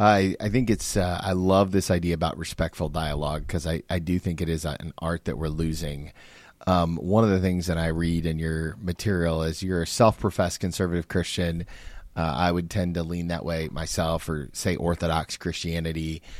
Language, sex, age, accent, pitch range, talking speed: English, male, 30-49, American, 85-105 Hz, 200 wpm